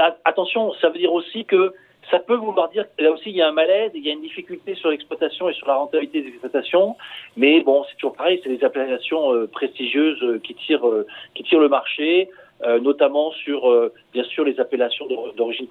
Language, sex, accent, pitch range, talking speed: French, male, French, 150-220 Hz, 190 wpm